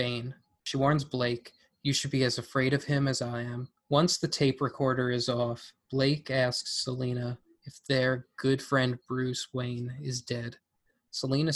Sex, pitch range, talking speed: male, 125-140 Hz, 165 wpm